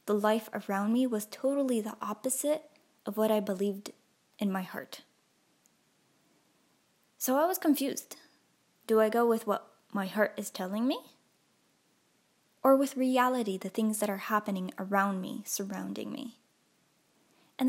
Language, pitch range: English, 200-245 Hz